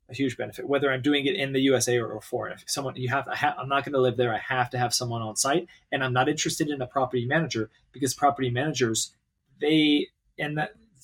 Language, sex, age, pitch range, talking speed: English, male, 30-49, 120-145 Hz, 230 wpm